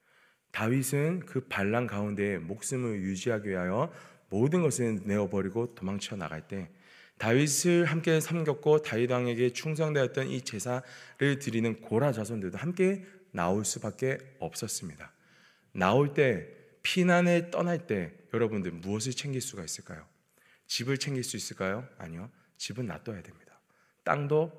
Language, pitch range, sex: Korean, 110-160 Hz, male